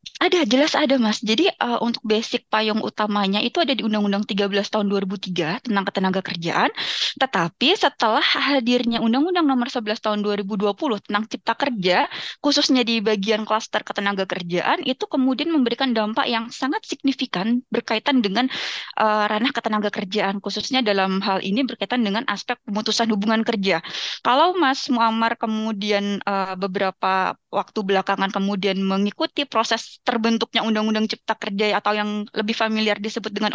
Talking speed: 145 wpm